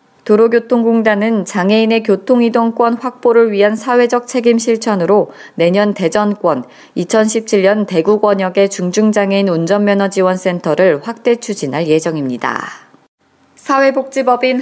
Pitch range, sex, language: 190-230 Hz, female, Korean